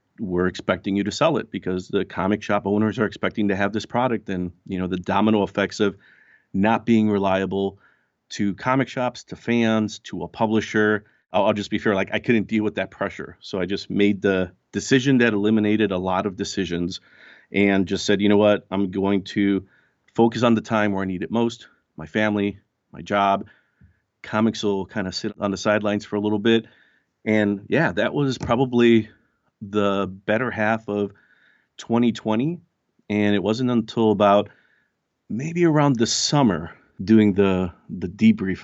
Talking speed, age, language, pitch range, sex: 180 wpm, 40-59, English, 95-110 Hz, male